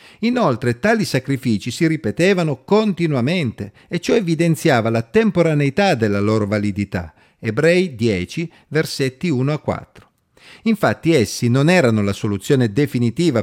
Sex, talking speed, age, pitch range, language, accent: male, 120 wpm, 50-69, 110-170 Hz, Italian, native